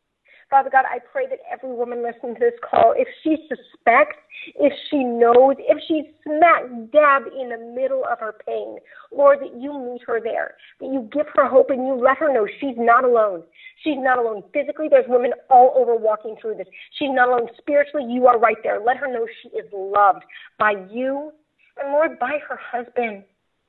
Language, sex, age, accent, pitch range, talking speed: English, female, 40-59, American, 250-305 Hz, 200 wpm